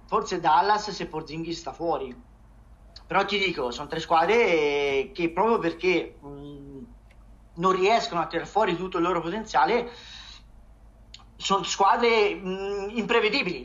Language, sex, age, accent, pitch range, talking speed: Italian, male, 30-49, native, 145-185 Hz, 130 wpm